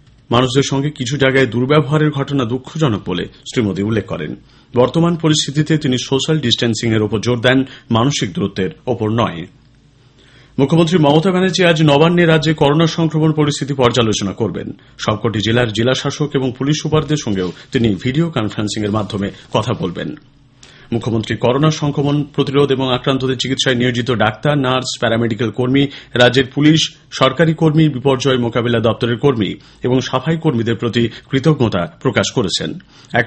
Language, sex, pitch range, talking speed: Bengali, male, 120-150 Hz, 145 wpm